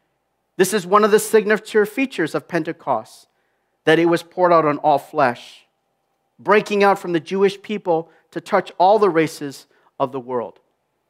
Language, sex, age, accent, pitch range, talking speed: English, male, 40-59, American, 165-230 Hz, 170 wpm